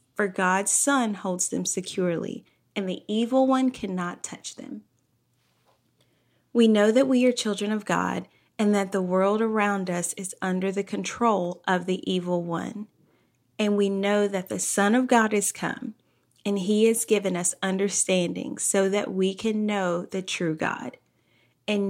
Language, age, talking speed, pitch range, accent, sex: English, 30-49, 165 wpm, 185-215 Hz, American, female